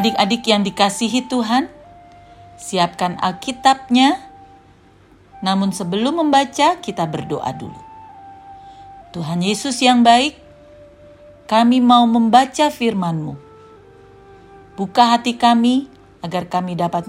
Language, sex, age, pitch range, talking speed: Indonesian, female, 40-59, 175-280 Hz, 95 wpm